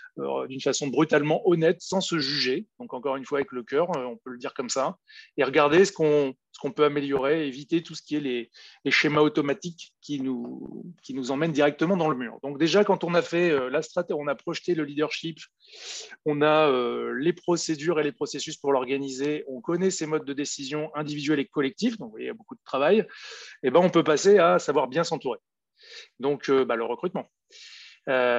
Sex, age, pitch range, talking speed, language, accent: male, 30-49, 140-190 Hz, 220 wpm, French, French